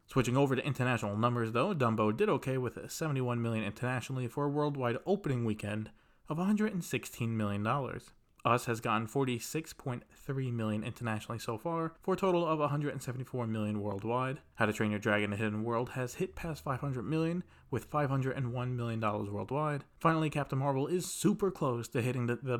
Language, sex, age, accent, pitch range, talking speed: English, male, 20-39, American, 115-145 Hz, 165 wpm